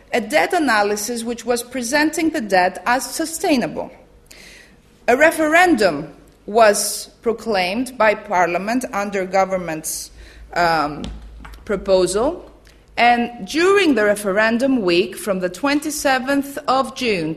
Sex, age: female, 30-49